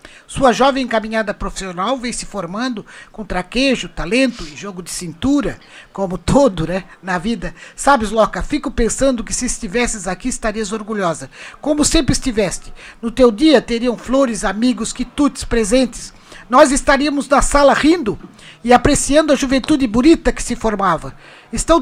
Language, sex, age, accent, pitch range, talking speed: Portuguese, male, 60-79, Brazilian, 190-255 Hz, 150 wpm